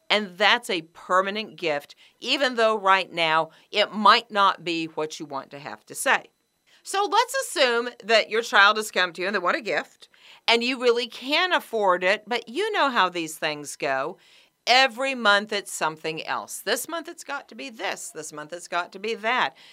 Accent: American